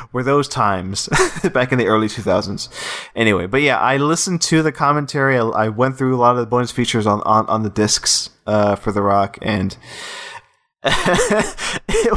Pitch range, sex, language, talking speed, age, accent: 110-135 Hz, male, English, 180 wpm, 20-39, American